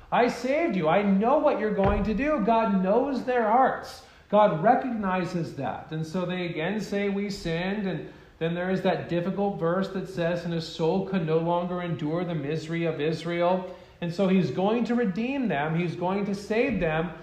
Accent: American